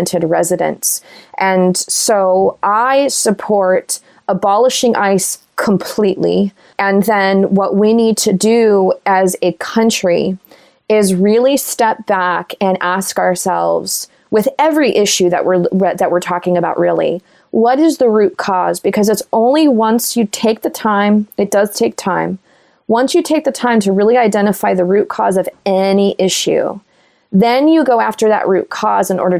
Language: English